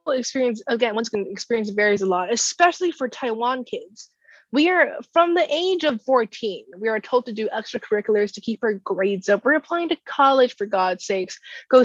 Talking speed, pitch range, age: 190 wpm, 195-270 Hz, 20-39